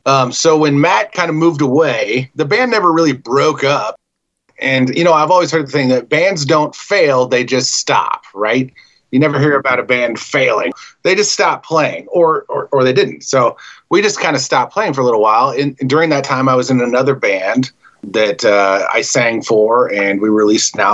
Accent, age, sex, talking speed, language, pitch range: American, 30-49, male, 215 wpm, English, 115-145 Hz